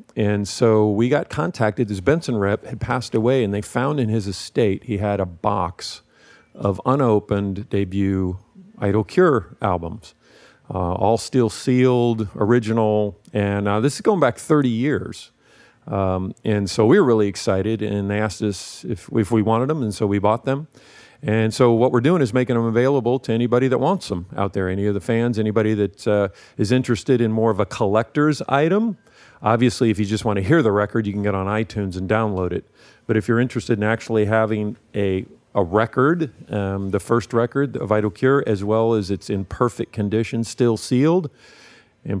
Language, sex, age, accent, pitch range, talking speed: English, male, 50-69, American, 105-125 Hz, 195 wpm